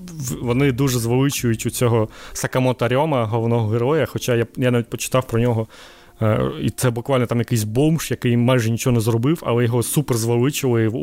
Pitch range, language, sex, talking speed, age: 115-135 Hz, Ukrainian, male, 170 wpm, 20-39